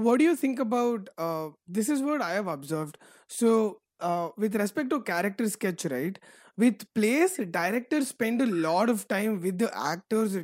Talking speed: 180 wpm